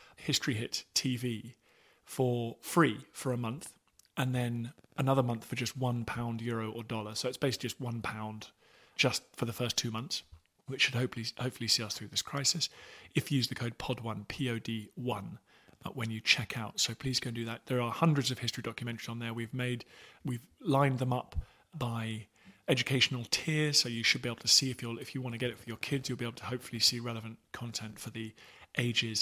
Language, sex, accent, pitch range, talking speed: English, male, British, 115-130 Hz, 220 wpm